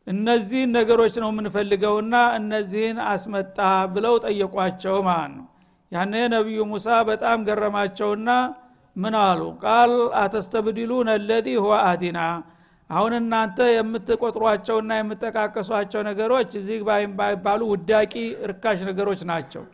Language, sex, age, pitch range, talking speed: Amharic, male, 60-79, 205-230 Hz, 95 wpm